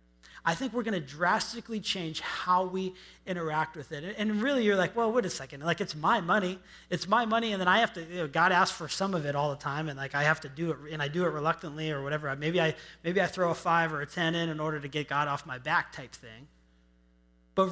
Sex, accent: male, American